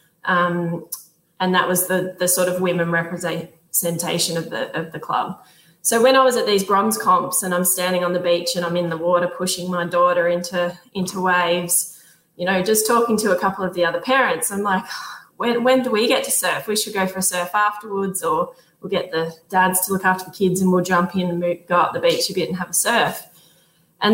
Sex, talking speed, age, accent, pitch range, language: female, 235 wpm, 20-39, Australian, 175-195 Hz, English